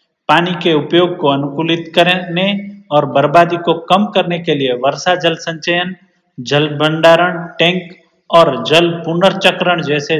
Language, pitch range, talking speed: Hindi, 150-175 Hz, 135 wpm